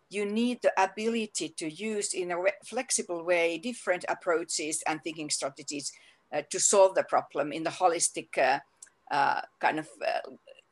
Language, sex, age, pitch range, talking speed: English, female, 50-69, 170-215 Hz, 160 wpm